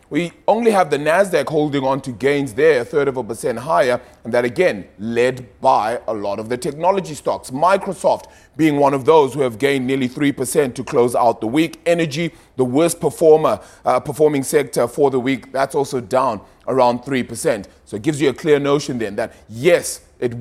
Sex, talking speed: male, 205 wpm